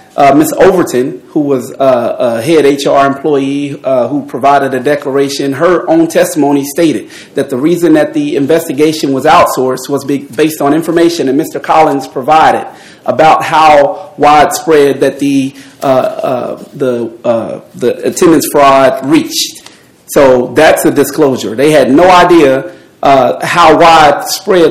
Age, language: 30-49, English